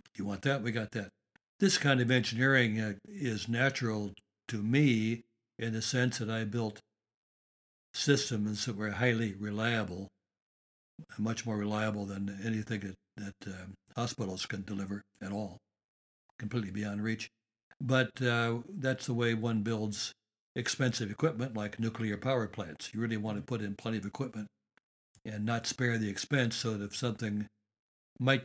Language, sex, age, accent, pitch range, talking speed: English, male, 60-79, American, 105-125 Hz, 155 wpm